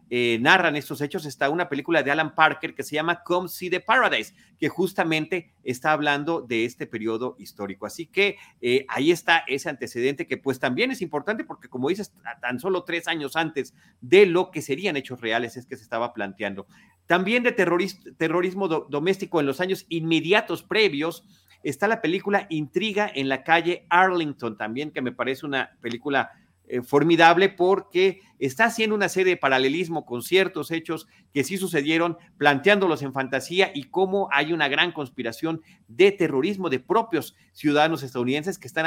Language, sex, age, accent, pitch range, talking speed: Spanish, male, 40-59, Mexican, 135-185 Hz, 175 wpm